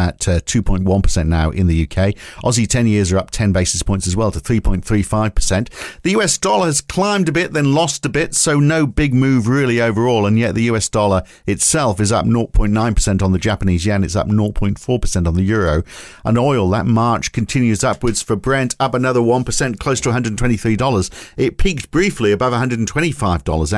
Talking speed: 185 wpm